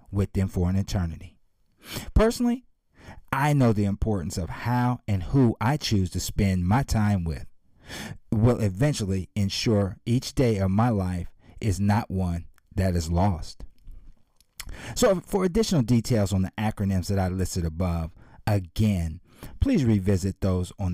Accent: American